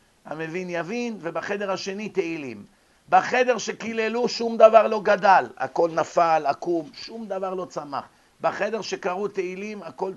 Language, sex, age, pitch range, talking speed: Hebrew, male, 50-69, 165-210 Hz, 130 wpm